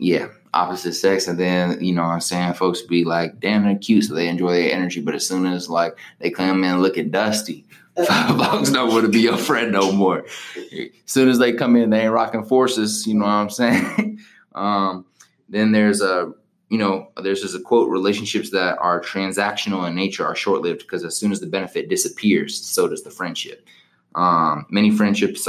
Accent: American